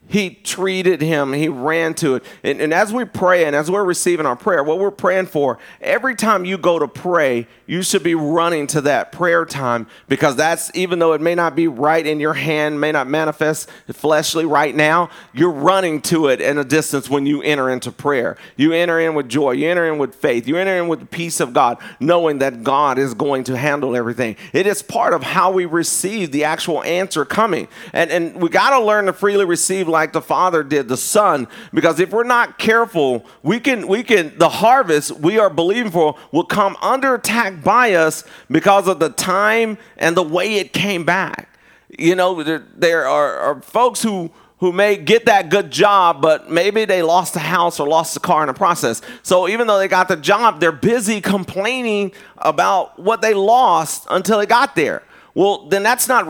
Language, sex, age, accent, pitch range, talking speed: English, male, 40-59, American, 155-200 Hz, 210 wpm